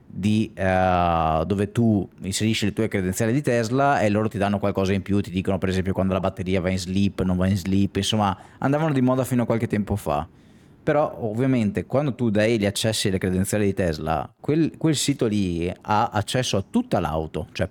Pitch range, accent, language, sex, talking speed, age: 95-135 Hz, native, Italian, male, 205 wpm, 20-39